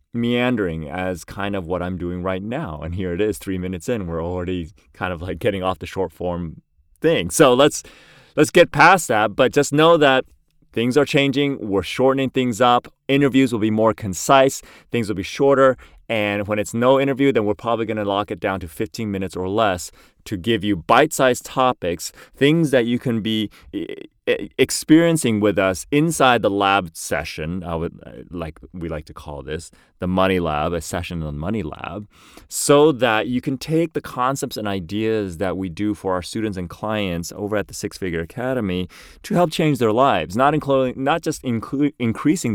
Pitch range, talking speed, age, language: 90-130 Hz, 195 wpm, 30-49, English